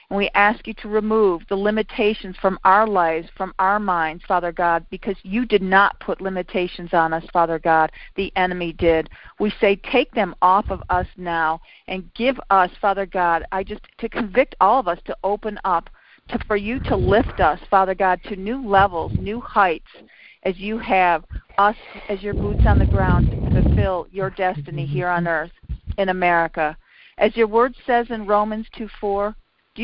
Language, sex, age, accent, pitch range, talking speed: English, female, 50-69, American, 185-215 Hz, 185 wpm